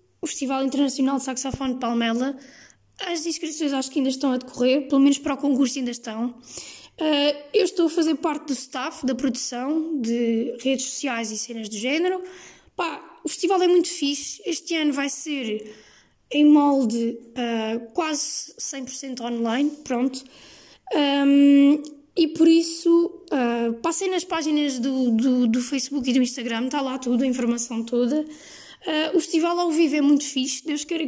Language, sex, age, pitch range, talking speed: Portuguese, female, 20-39, 250-300 Hz, 155 wpm